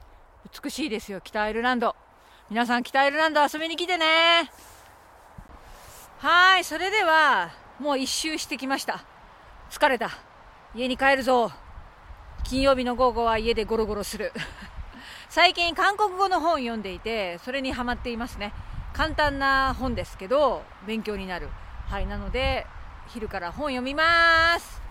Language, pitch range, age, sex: Japanese, 225-330 Hz, 40-59, female